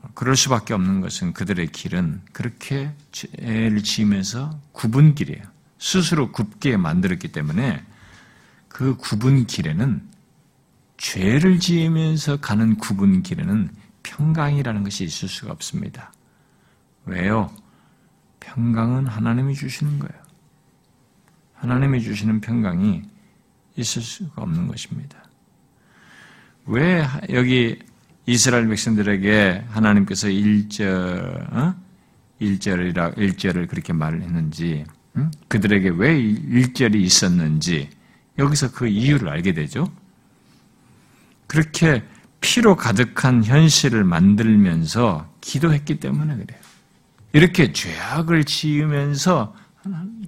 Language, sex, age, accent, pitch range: Korean, male, 50-69, native, 110-160 Hz